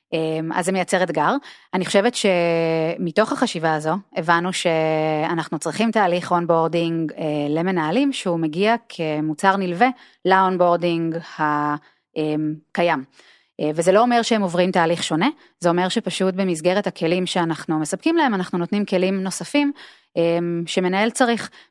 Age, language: 30-49, Hebrew